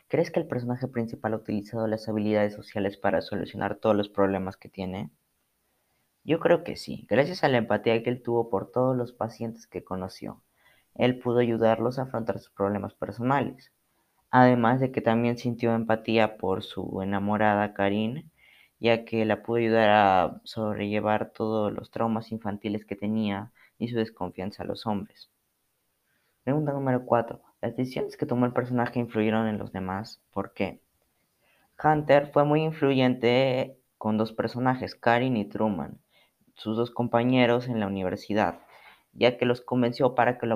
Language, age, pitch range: Spanish, 20-39, 105-120 Hz